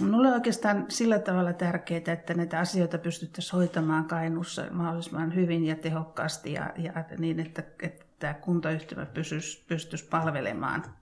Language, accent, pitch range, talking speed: Finnish, native, 165-185 Hz, 135 wpm